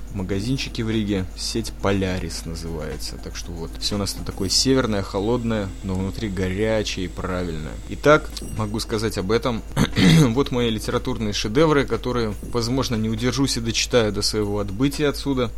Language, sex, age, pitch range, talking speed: Russian, male, 20-39, 95-120 Hz, 155 wpm